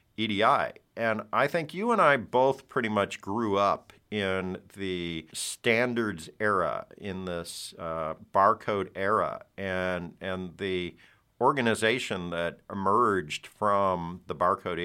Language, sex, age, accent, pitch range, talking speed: English, male, 50-69, American, 90-110 Hz, 120 wpm